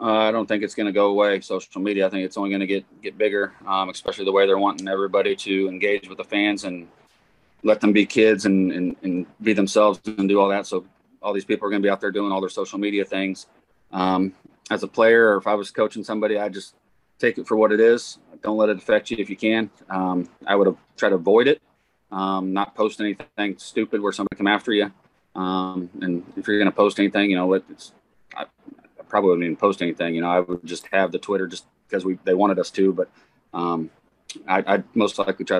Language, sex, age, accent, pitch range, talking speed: English, male, 30-49, American, 90-105 Hz, 240 wpm